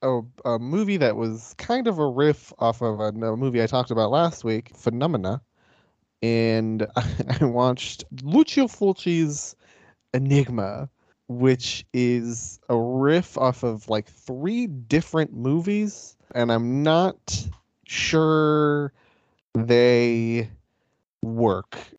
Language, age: English, 20-39